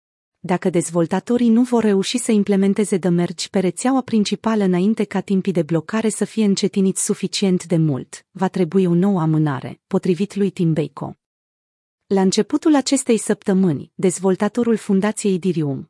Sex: female